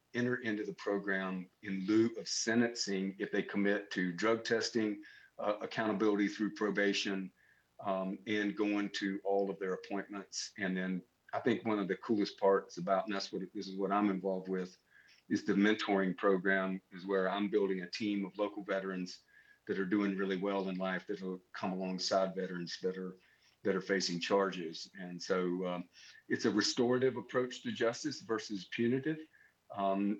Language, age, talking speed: English, 50-69, 175 wpm